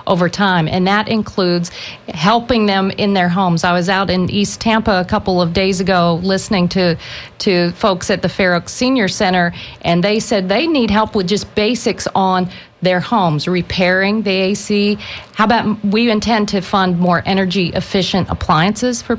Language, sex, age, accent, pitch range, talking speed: English, female, 40-59, American, 175-210 Hz, 175 wpm